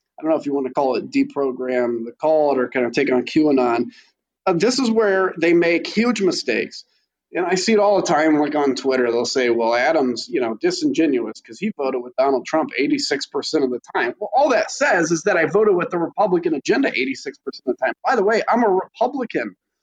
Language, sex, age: English, male, 30-49